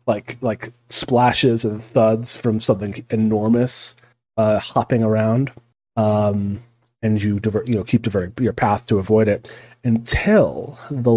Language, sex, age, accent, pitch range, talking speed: English, male, 30-49, American, 105-130 Hz, 145 wpm